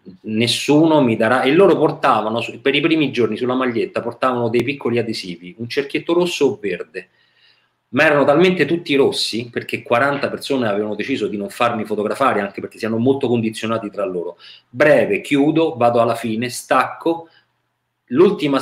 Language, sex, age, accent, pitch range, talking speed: Italian, male, 40-59, native, 105-135 Hz, 160 wpm